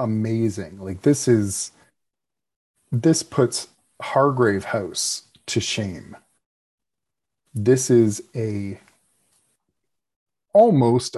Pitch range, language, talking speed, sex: 105-130 Hz, English, 75 wpm, male